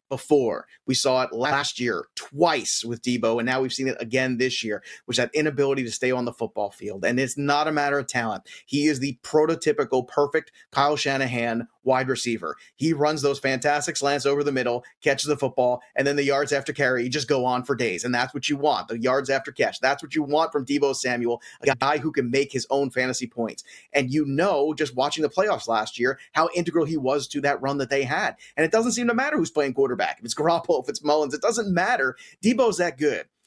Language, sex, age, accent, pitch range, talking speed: English, male, 30-49, American, 130-160 Hz, 230 wpm